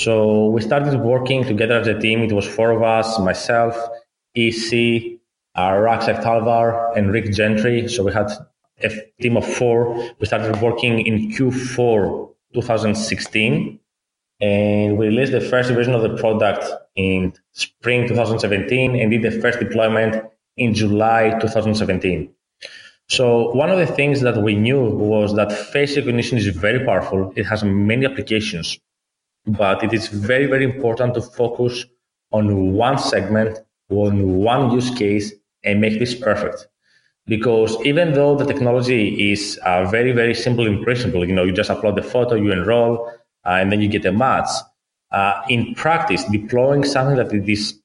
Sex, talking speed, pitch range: male, 160 wpm, 105-120 Hz